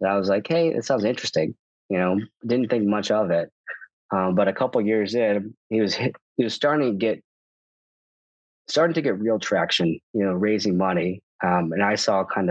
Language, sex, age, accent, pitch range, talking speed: English, male, 20-39, American, 95-110 Hz, 205 wpm